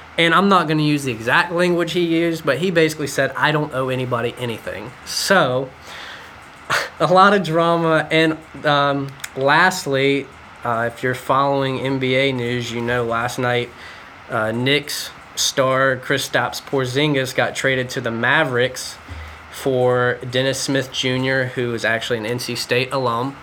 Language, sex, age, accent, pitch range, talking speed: English, male, 10-29, American, 120-140 Hz, 155 wpm